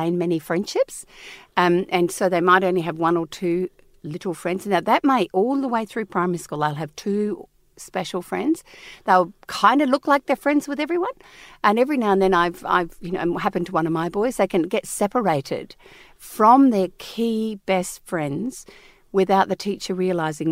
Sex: female